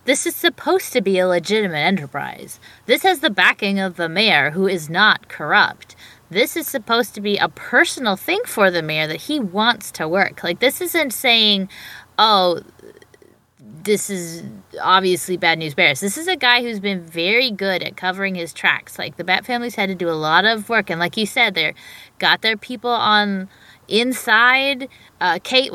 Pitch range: 170-235 Hz